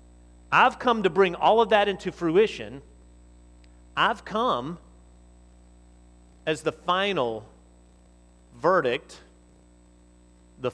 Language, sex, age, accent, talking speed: English, male, 40-59, American, 90 wpm